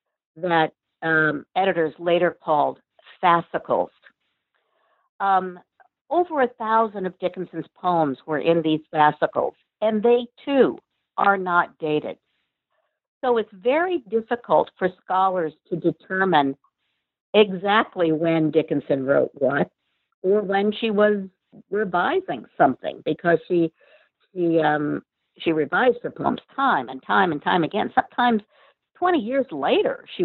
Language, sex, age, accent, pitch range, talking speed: English, female, 50-69, American, 170-240 Hz, 120 wpm